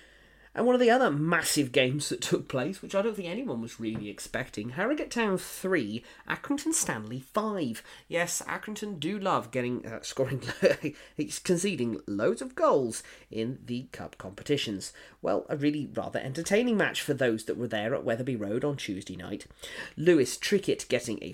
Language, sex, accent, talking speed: English, male, British, 170 wpm